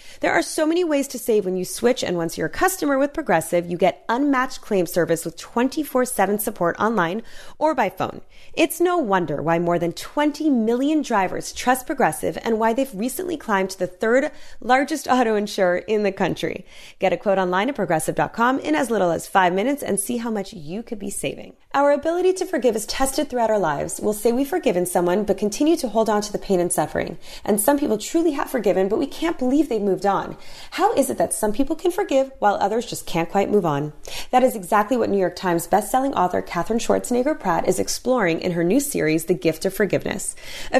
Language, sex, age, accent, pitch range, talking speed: English, female, 30-49, American, 185-270 Hz, 220 wpm